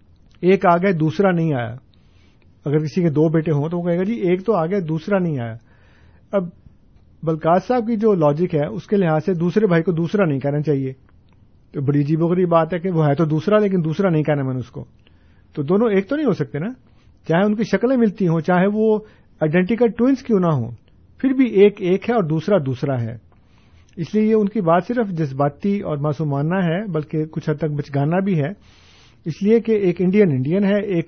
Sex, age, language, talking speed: male, 50-69, Urdu, 220 wpm